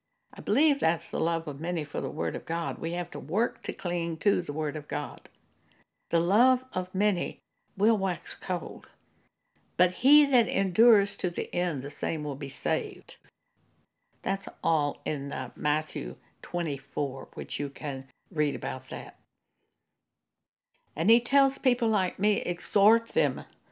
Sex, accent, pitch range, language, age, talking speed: female, American, 155-210 Hz, English, 60-79, 155 wpm